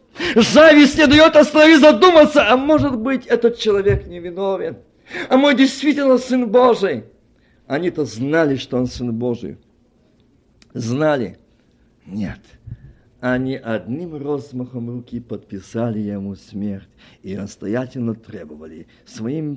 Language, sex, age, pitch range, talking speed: Russian, male, 50-69, 115-170 Hz, 105 wpm